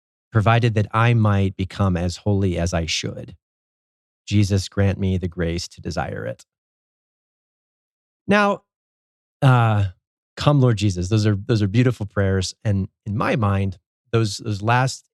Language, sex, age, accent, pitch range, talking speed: English, male, 30-49, American, 90-110 Hz, 145 wpm